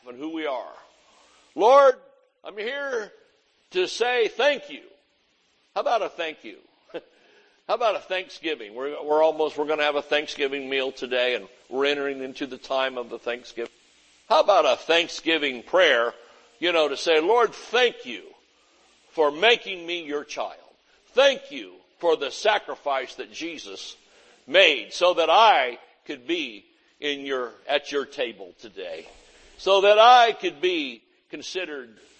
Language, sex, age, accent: English, male, 60-79, American